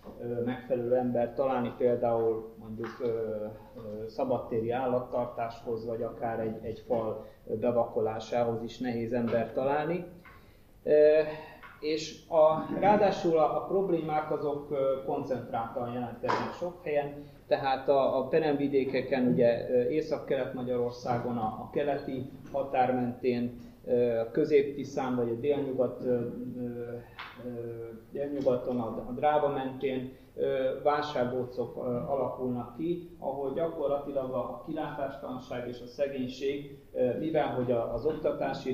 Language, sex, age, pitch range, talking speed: Hungarian, male, 30-49, 120-145 Hz, 100 wpm